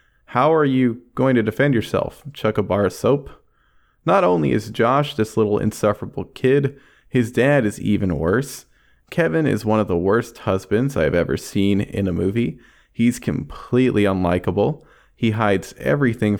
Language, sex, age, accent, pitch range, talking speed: English, male, 20-39, American, 100-130 Hz, 160 wpm